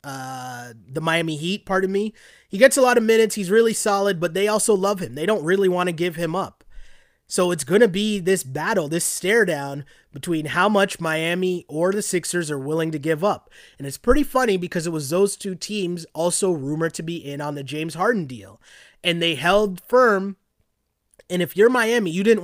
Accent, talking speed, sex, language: American, 215 wpm, male, English